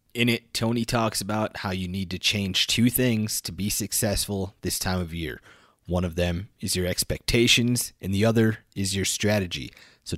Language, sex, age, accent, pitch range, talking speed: English, male, 30-49, American, 95-110 Hz, 190 wpm